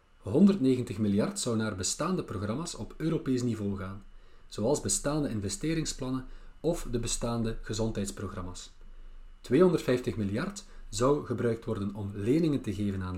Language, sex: Dutch, male